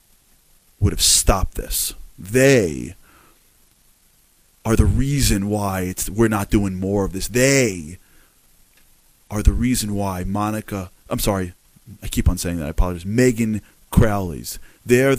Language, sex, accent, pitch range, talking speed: English, male, American, 85-115 Hz, 140 wpm